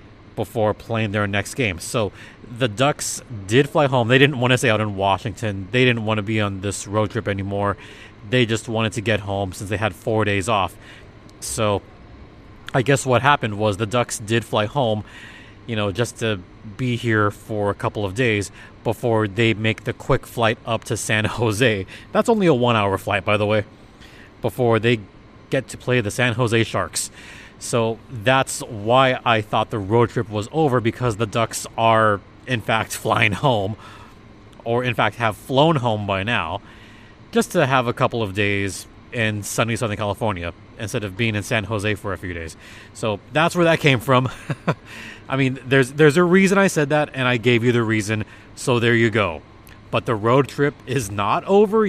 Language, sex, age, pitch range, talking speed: English, male, 30-49, 105-125 Hz, 195 wpm